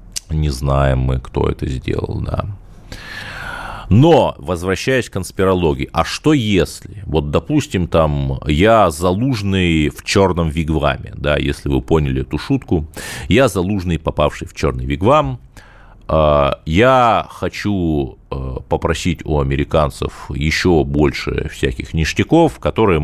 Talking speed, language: 115 wpm, Russian